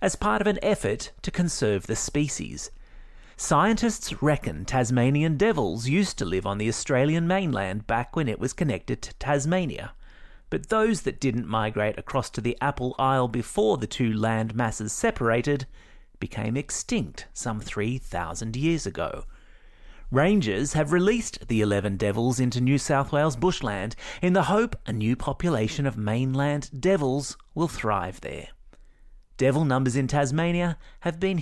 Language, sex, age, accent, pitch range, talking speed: English, male, 30-49, Australian, 110-165 Hz, 150 wpm